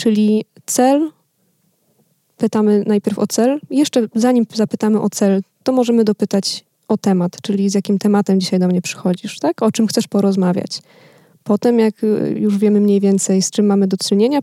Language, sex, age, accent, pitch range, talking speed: Polish, female, 20-39, native, 195-225 Hz, 160 wpm